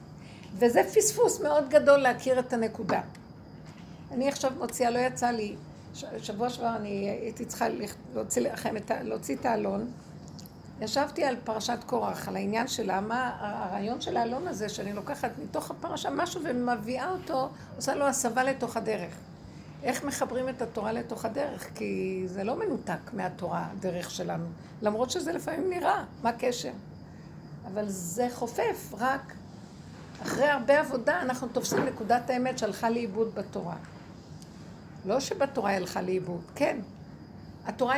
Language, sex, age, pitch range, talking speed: Hebrew, female, 60-79, 215-275 Hz, 135 wpm